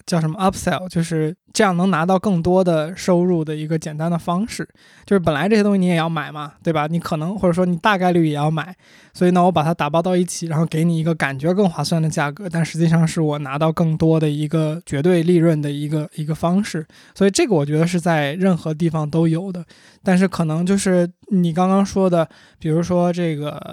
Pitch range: 160-185 Hz